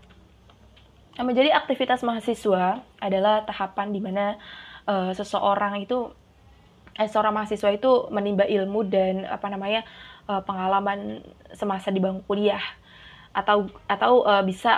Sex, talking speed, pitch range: female, 120 wpm, 195-225 Hz